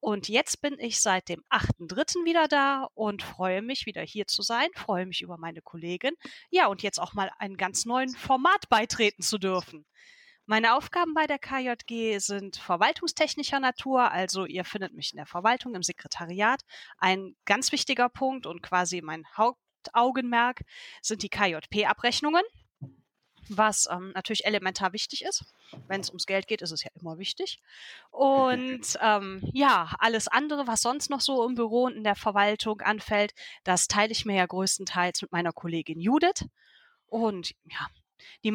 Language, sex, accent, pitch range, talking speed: German, female, German, 185-260 Hz, 165 wpm